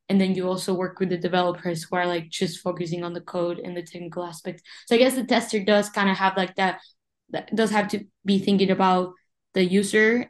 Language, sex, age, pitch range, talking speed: English, female, 10-29, 185-210 Hz, 235 wpm